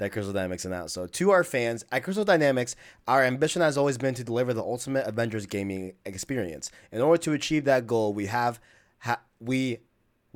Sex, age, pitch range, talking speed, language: male, 20-39, 110-130 Hz, 185 wpm, English